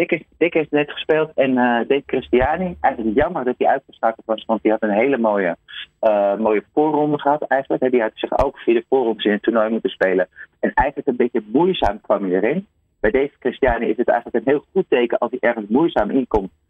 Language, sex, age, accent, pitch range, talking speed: Dutch, male, 30-49, Dutch, 100-135 Hz, 220 wpm